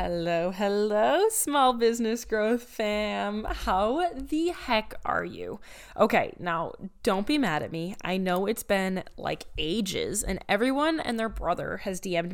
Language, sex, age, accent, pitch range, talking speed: English, female, 20-39, American, 190-245 Hz, 150 wpm